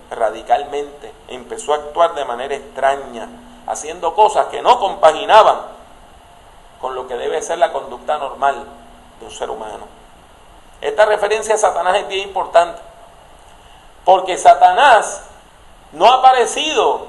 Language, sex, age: English, male, 40-59